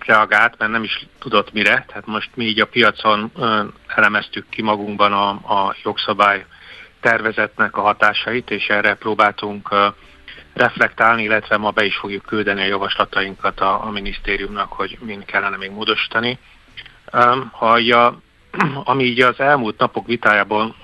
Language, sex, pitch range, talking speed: Hungarian, male, 100-120 Hz, 140 wpm